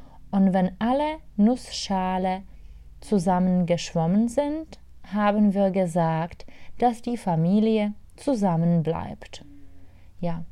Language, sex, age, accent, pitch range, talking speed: Czech, female, 30-49, German, 170-240 Hz, 85 wpm